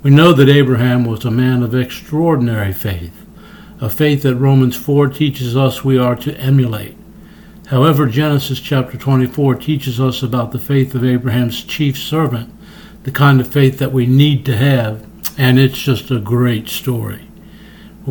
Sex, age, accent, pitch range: male, 60-79, American, 125-150 Hz